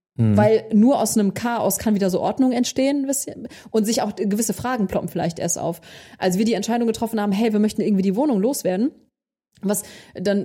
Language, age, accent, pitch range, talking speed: German, 30-49, German, 190-235 Hz, 195 wpm